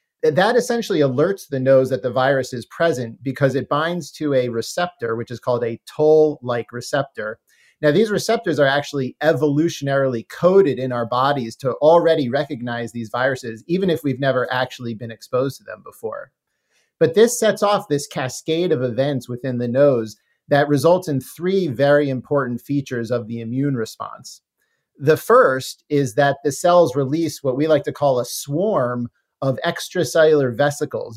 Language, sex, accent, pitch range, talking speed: English, male, American, 130-160 Hz, 165 wpm